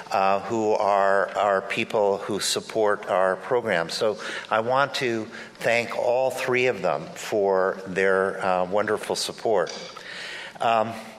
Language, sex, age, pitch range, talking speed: English, male, 50-69, 95-120 Hz, 130 wpm